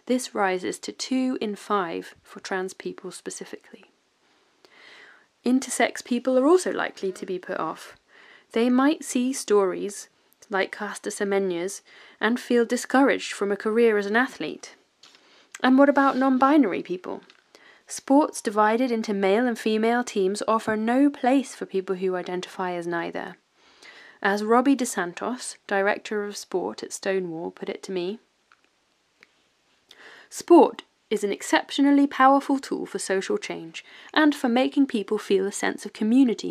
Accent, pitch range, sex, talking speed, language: British, 195-265 Hz, female, 140 wpm, English